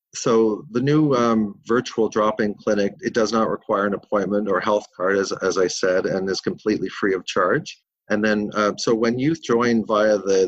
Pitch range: 100-110 Hz